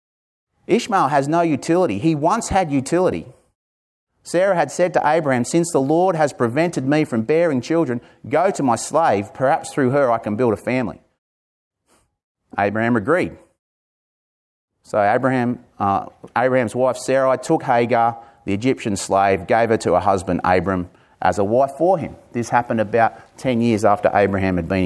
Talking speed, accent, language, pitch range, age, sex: 160 wpm, Australian, English, 115-170 Hz, 30-49, male